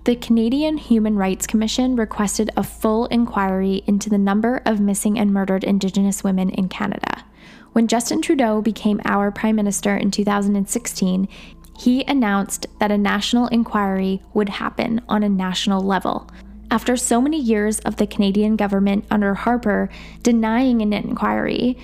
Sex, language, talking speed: female, English, 150 wpm